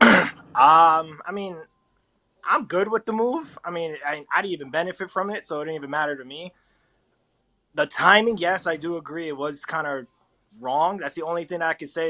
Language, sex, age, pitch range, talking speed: English, male, 20-39, 140-170 Hz, 210 wpm